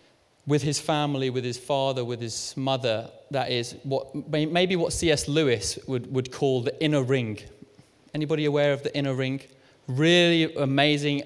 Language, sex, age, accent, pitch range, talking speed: English, male, 20-39, British, 130-160 Hz, 160 wpm